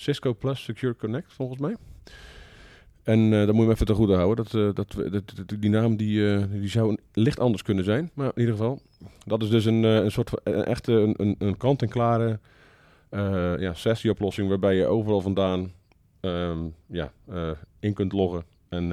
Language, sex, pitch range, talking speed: Dutch, male, 90-110 Hz, 190 wpm